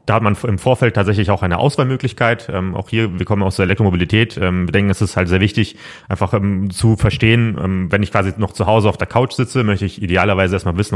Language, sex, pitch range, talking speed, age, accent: German, male, 95-110 Hz, 245 wpm, 30-49, German